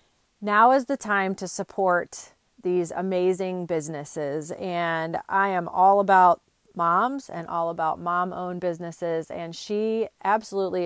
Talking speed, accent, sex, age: 125 wpm, American, female, 30-49